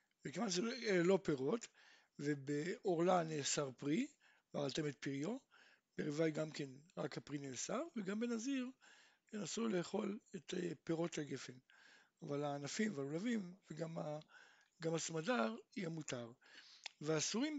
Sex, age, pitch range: male, 60-79, 160-230 Hz